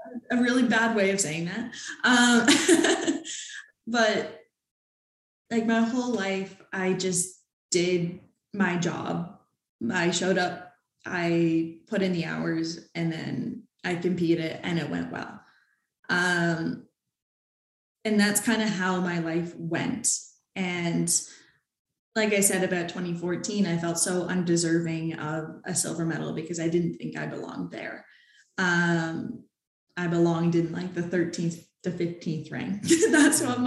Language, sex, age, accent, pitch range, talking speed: English, female, 10-29, American, 165-205 Hz, 135 wpm